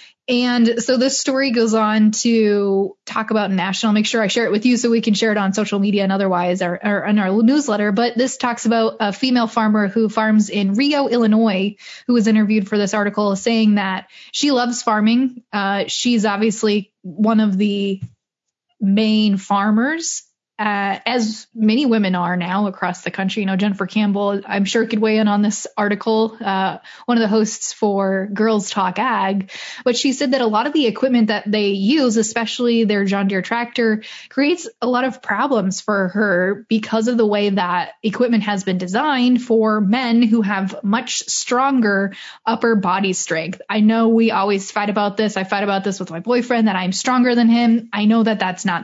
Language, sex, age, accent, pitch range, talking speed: English, female, 10-29, American, 200-240 Hz, 195 wpm